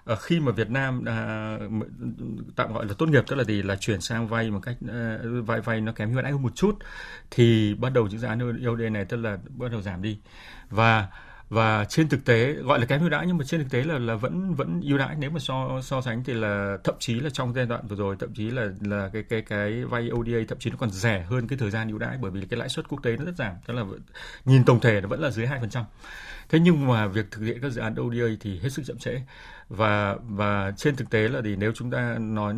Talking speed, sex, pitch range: 270 wpm, male, 105-125 Hz